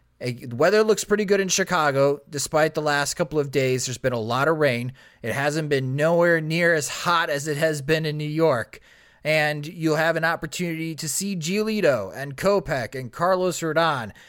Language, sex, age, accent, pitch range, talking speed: English, male, 30-49, American, 135-175 Hz, 195 wpm